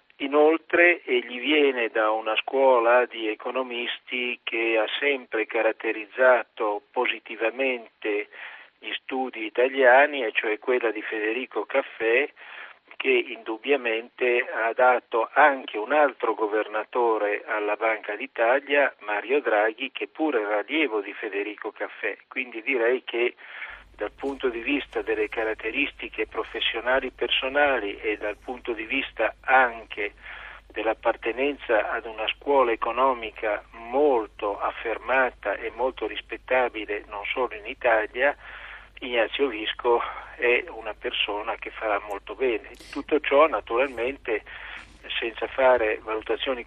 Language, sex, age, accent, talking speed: Italian, male, 50-69, native, 115 wpm